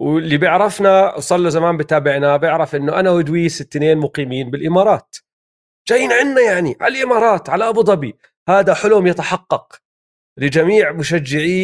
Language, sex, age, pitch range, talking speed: Arabic, male, 40-59, 145-185 Hz, 135 wpm